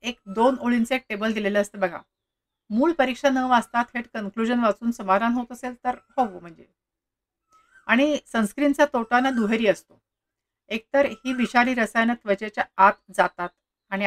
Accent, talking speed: native, 140 wpm